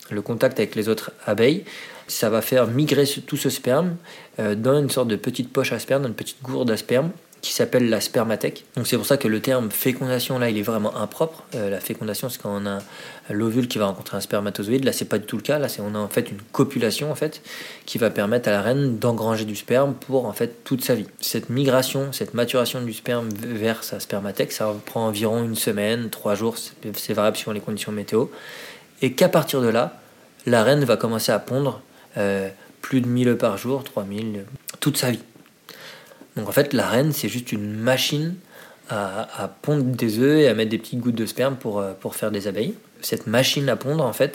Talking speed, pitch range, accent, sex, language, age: 225 wpm, 110-135 Hz, French, male, English, 20-39